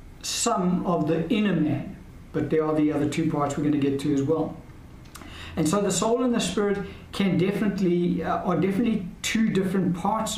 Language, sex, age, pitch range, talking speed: English, male, 60-79, 155-185 Hz, 195 wpm